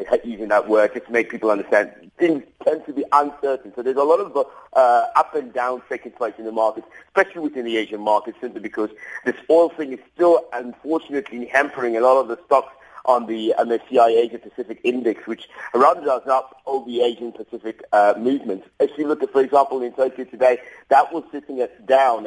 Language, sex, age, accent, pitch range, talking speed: English, male, 50-69, British, 120-165 Hz, 205 wpm